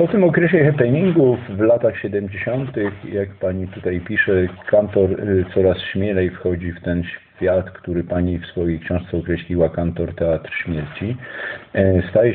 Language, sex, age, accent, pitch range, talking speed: Polish, male, 50-69, native, 85-105 Hz, 135 wpm